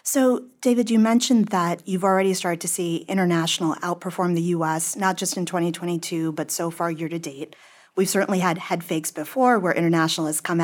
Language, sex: English, female